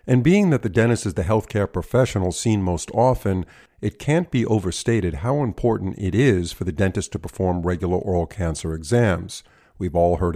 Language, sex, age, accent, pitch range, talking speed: English, male, 50-69, American, 90-115 Hz, 185 wpm